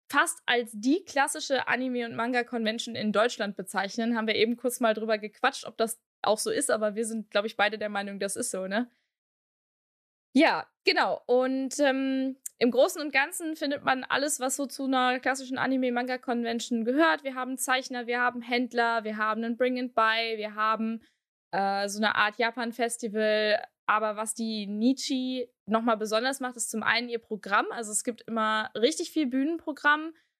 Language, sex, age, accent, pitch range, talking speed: German, female, 20-39, German, 220-265 Hz, 175 wpm